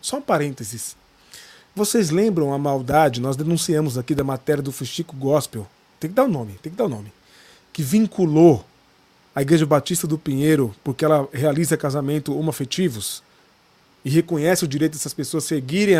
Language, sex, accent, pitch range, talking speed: Portuguese, male, Brazilian, 150-195 Hz, 165 wpm